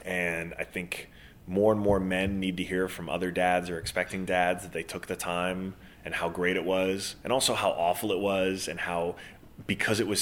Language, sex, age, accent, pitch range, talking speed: English, male, 20-39, American, 90-105 Hz, 215 wpm